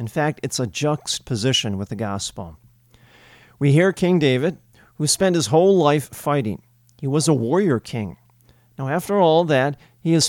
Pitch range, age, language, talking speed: 120-150 Hz, 40-59, English, 170 wpm